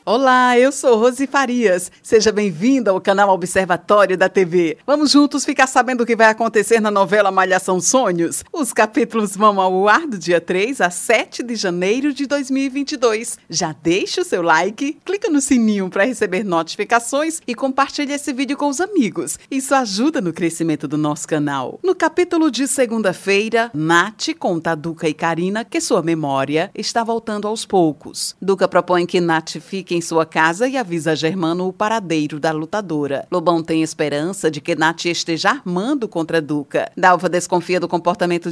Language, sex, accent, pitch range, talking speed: Portuguese, female, Brazilian, 170-235 Hz, 170 wpm